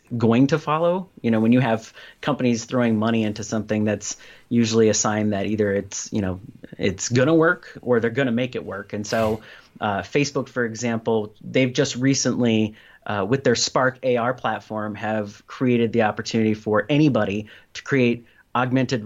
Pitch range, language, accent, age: 110-130 Hz, English, American, 30-49